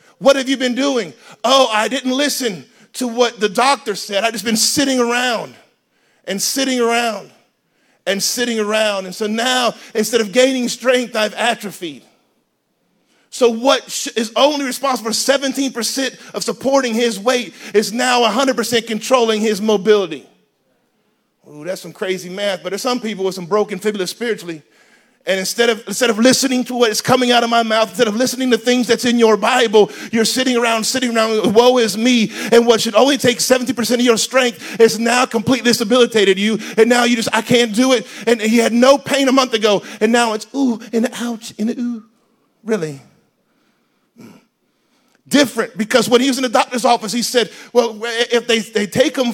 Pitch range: 220-255 Hz